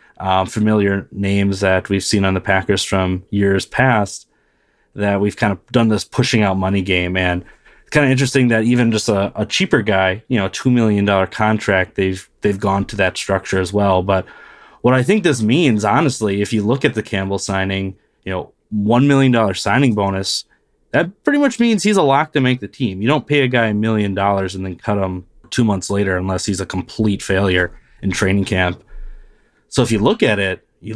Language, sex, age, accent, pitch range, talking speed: English, male, 20-39, American, 95-120 Hz, 210 wpm